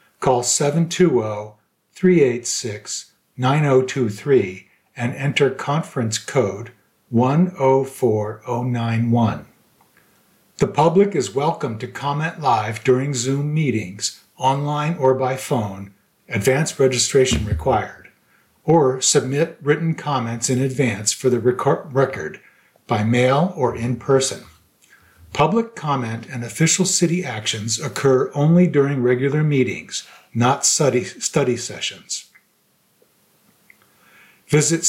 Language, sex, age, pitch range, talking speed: English, male, 50-69, 120-145 Hz, 95 wpm